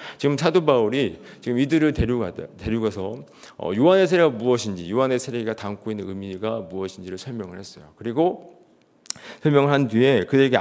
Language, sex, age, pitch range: Korean, male, 40-59, 110-155 Hz